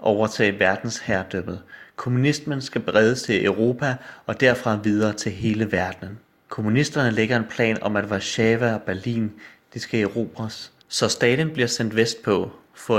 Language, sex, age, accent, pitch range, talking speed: Danish, male, 30-49, native, 100-120 Hz, 140 wpm